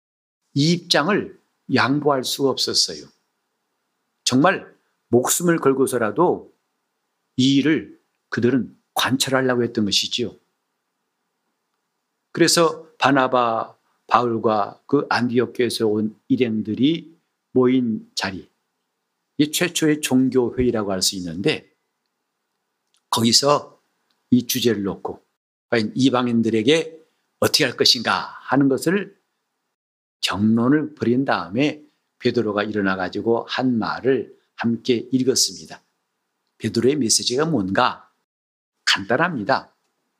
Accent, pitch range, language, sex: native, 115-155 Hz, Korean, male